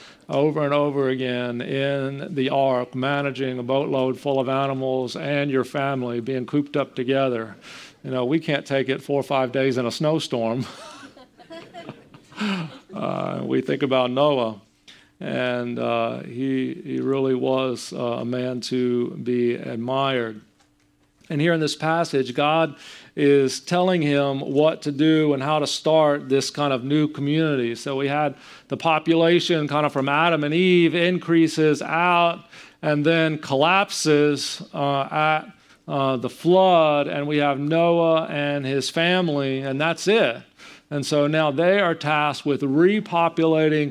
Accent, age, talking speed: American, 40-59, 150 wpm